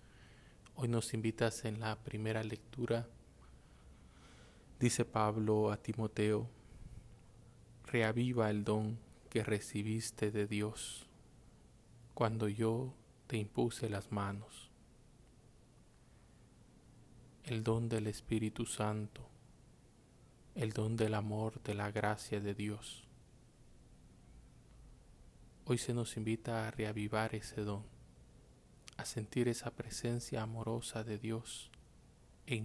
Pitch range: 105-115 Hz